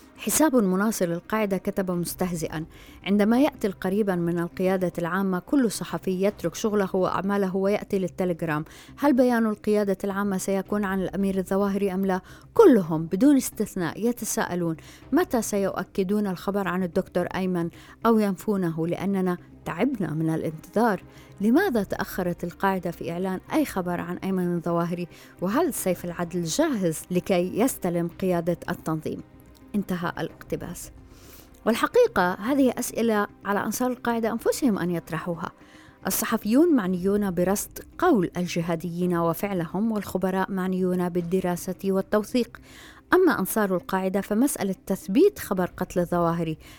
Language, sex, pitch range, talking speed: Arabic, female, 175-220 Hz, 115 wpm